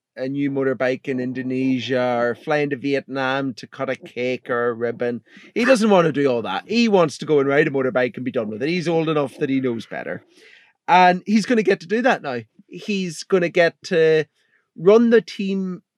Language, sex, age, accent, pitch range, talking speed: English, male, 30-49, British, 135-185 Hz, 225 wpm